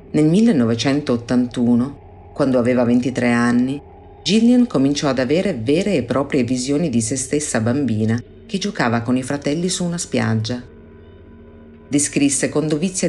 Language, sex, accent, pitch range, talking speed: Italian, female, native, 120-145 Hz, 135 wpm